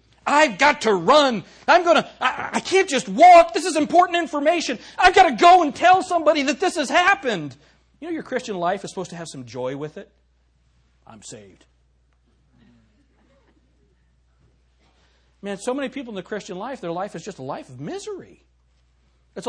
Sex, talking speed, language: male, 180 wpm, English